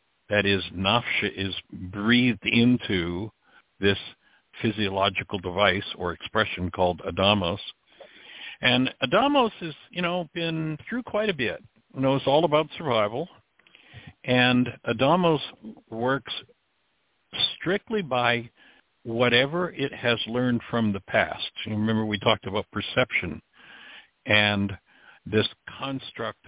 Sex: male